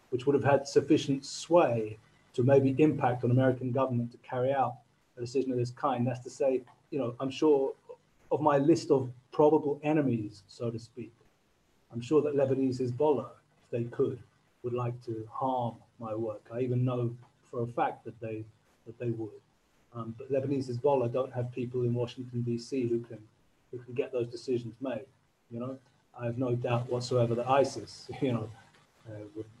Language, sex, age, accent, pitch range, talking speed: English, male, 40-59, British, 115-135 Hz, 185 wpm